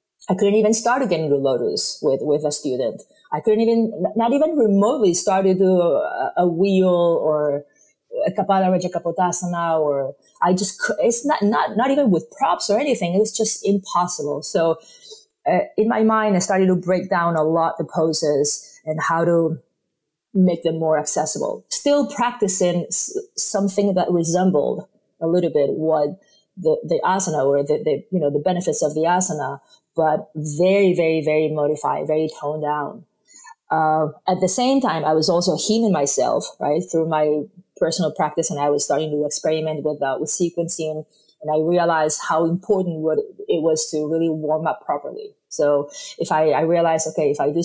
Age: 30-49